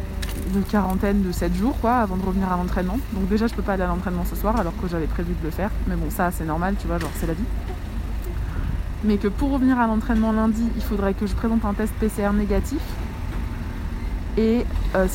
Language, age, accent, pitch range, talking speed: French, 20-39, French, 175-225 Hz, 225 wpm